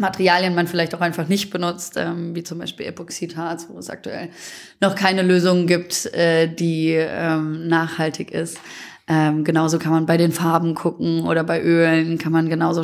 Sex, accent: female, German